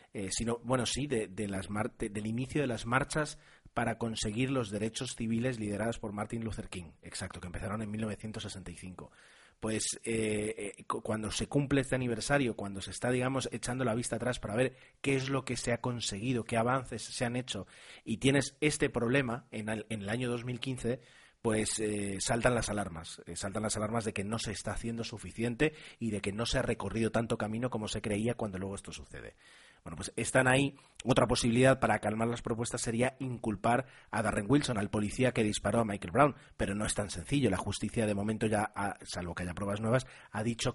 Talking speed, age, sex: 205 wpm, 30-49, male